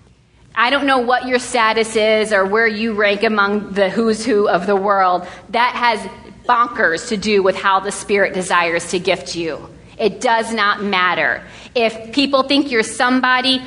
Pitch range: 185-235 Hz